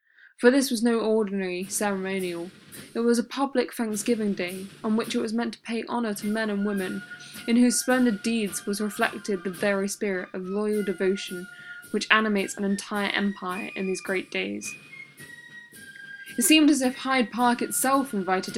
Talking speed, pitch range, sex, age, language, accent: 170 wpm, 195-235 Hz, female, 10-29, English, British